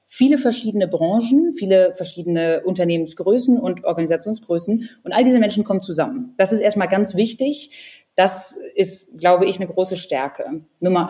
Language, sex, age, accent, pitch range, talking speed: German, female, 20-39, German, 175-210 Hz, 145 wpm